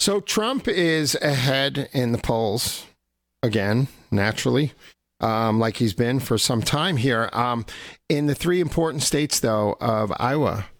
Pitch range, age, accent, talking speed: 110-130 Hz, 50-69, American, 145 wpm